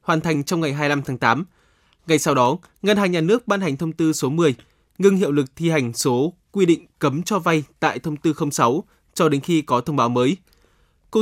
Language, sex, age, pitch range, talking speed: Vietnamese, male, 20-39, 130-175 Hz, 230 wpm